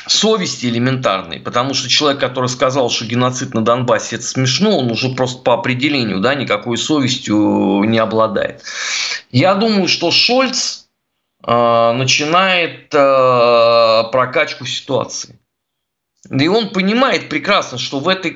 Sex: male